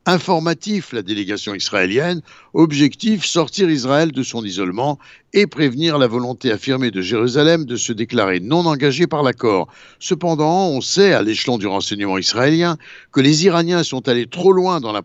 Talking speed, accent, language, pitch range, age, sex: 165 wpm, French, Italian, 120-160 Hz, 60-79, male